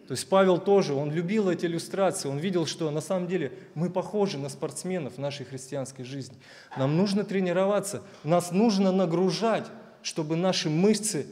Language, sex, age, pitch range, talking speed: Russian, male, 20-39, 145-190 Hz, 165 wpm